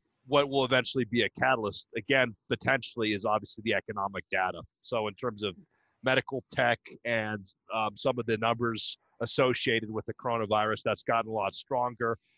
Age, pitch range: 30-49, 110-125 Hz